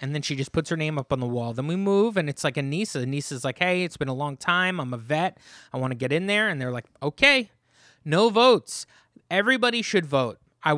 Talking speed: 265 wpm